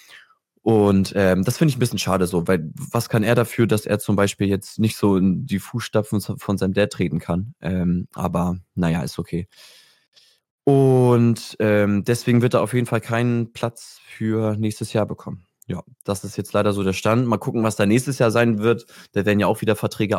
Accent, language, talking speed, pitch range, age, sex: German, German, 210 wpm, 95-120 Hz, 20-39, male